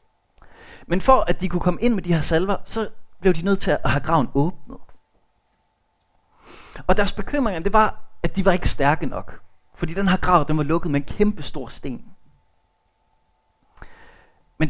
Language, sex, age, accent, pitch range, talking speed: Danish, male, 30-49, native, 110-185 Hz, 175 wpm